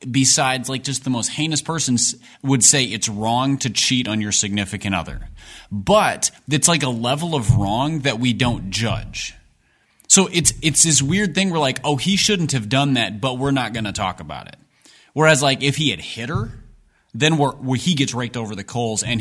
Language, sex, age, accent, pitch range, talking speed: English, male, 30-49, American, 110-140 Hz, 205 wpm